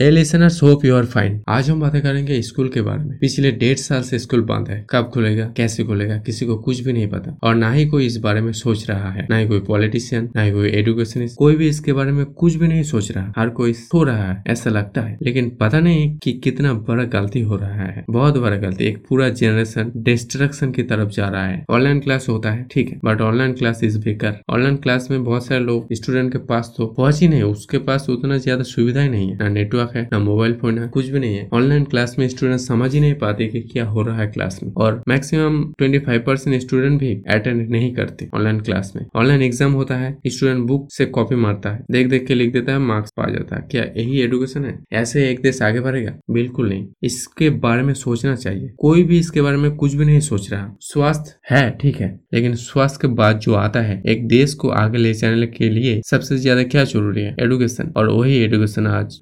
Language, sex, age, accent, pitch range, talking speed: Hindi, male, 20-39, native, 110-135 Hz, 230 wpm